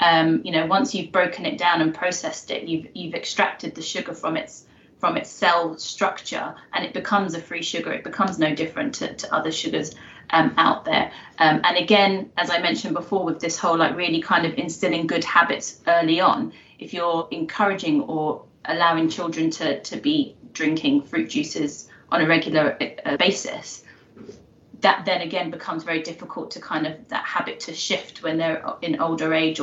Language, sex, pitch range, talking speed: English, female, 165-225 Hz, 190 wpm